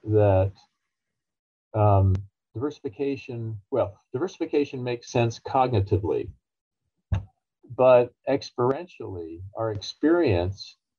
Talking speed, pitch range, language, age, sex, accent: 65 wpm, 90-115 Hz, English, 50-69, male, American